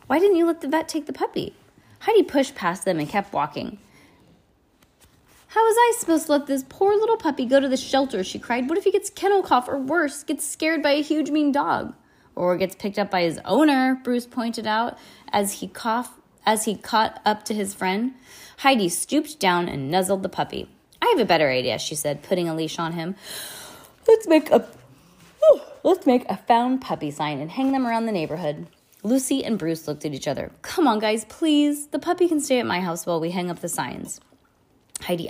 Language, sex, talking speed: English, female, 215 wpm